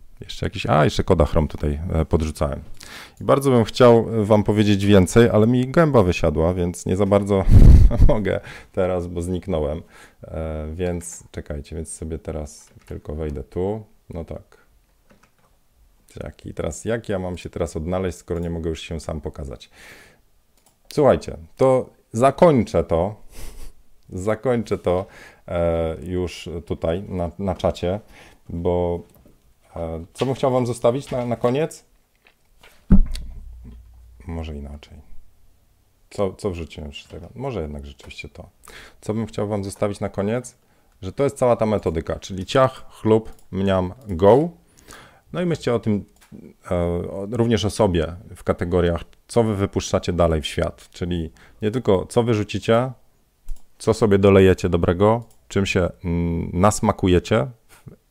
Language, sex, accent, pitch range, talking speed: Polish, male, native, 80-110 Hz, 135 wpm